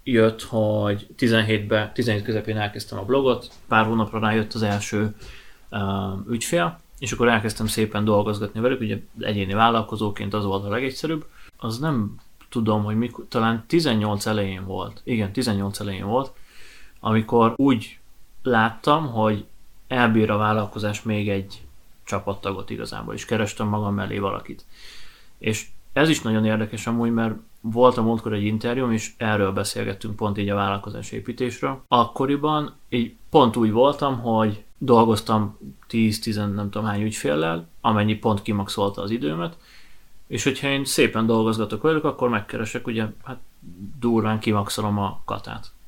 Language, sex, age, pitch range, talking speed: Hungarian, male, 30-49, 105-120 Hz, 140 wpm